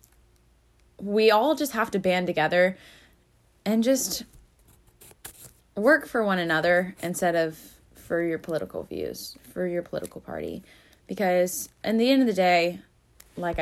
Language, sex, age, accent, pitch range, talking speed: English, female, 10-29, American, 165-200 Hz, 135 wpm